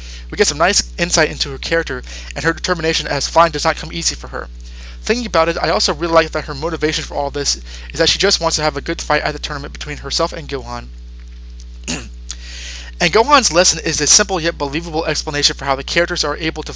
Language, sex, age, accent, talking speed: English, male, 20-39, American, 235 wpm